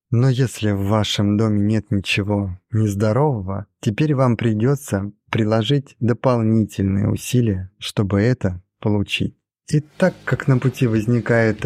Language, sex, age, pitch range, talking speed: Russian, male, 30-49, 105-130 Hz, 120 wpm